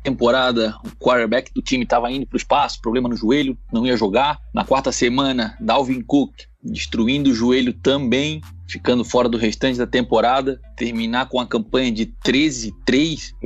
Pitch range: 115-150 Hz